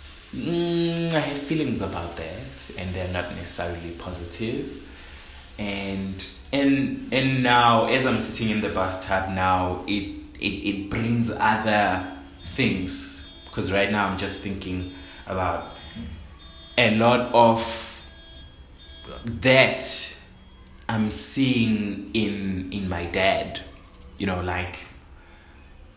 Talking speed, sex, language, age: 110 wpm, male, English, 20-39